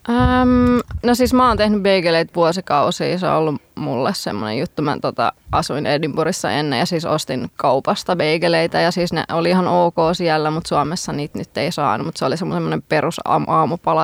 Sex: female